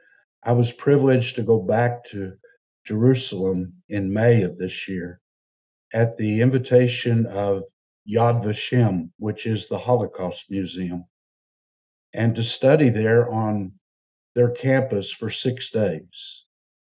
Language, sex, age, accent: English, male, 60-79, American